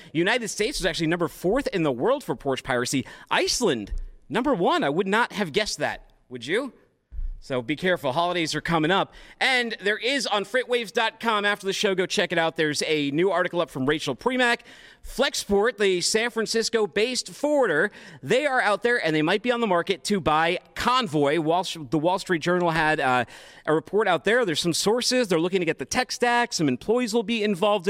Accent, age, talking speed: American, 40-59, 200 wpm